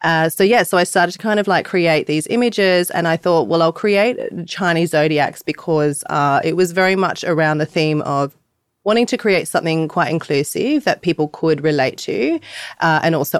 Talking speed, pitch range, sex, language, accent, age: 200 wpm, 160-195 Hz, female, English, Australian, 30-49